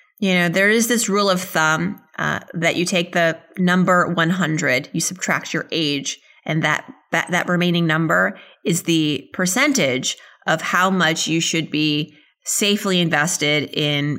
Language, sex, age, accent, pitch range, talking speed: English, female, 30-49, American, 155-195 Hz, 155 wpm